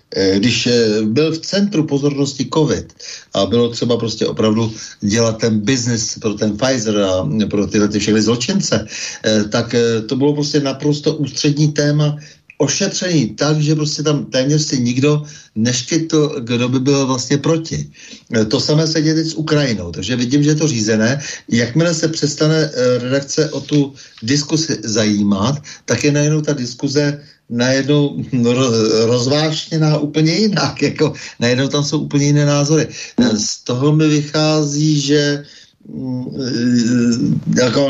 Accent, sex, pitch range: native, male, 115-145 Hz